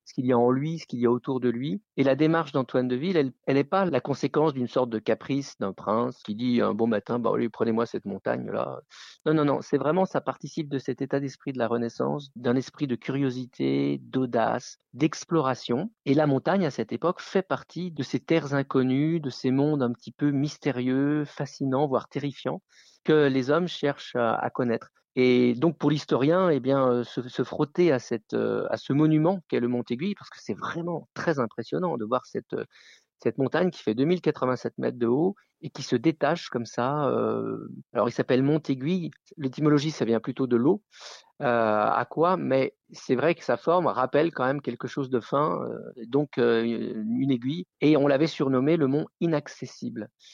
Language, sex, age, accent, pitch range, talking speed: French, male, 50-69, French, 125-155 Hz, 200 wpm